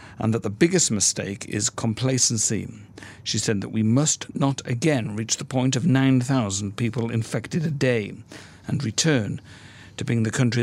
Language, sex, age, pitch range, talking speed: English, male, 50-69, 110-130 Hz, 165 wpm